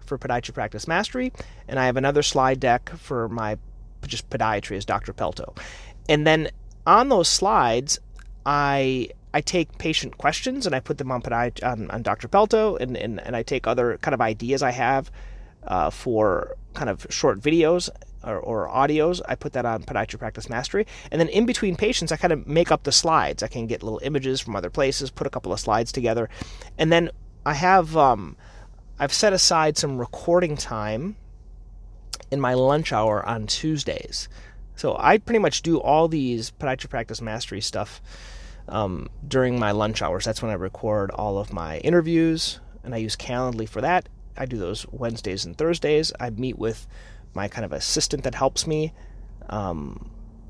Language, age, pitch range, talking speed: English, 30-49, 110-155 Hz, 185 wpm